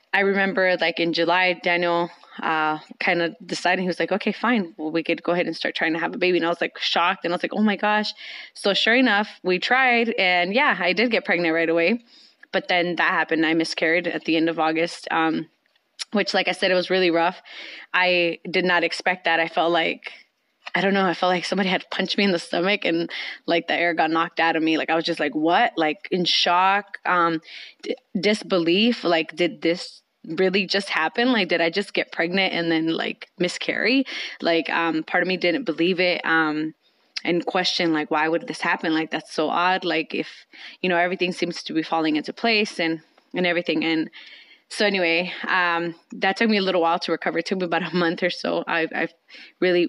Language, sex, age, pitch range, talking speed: English, female, 20-39, 165-185 Hz, 225 wpm